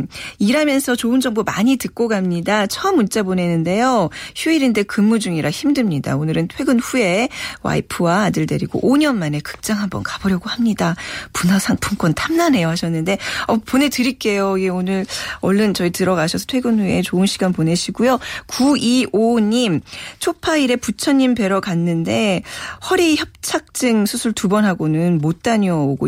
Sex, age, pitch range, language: female, 40-59, 170-240 Hz, Korean